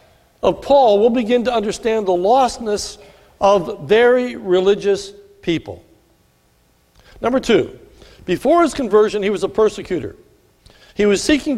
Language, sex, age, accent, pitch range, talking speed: English, male, 60-79, American, 175-230 Hz, 125 wpm